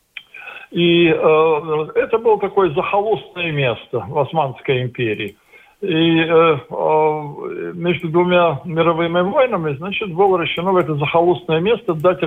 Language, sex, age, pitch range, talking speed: Russian, male, 60-79, 155-195 Hz, 115 wpm